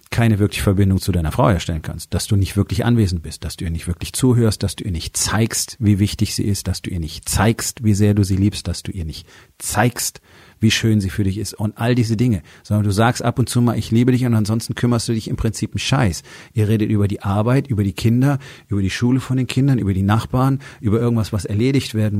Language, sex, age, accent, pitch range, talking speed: German, male, 40-59, German, 100-115 Hz, 255 wpm